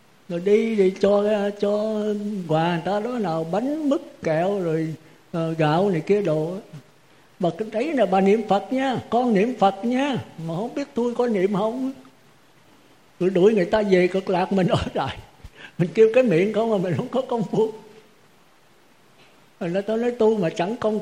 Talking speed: 190 wpm